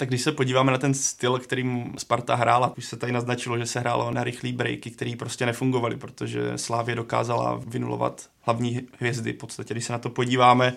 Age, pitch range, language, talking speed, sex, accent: 20-39, 120-130 Hz, Czech, 200 wpm, male, native